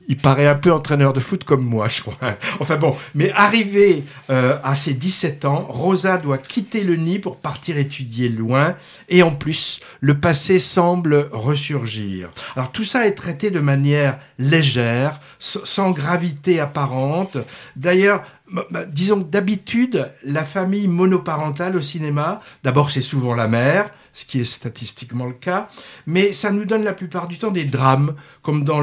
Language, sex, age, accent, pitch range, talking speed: French, male, 60-79, French, 140-185 Hz, 160 wpm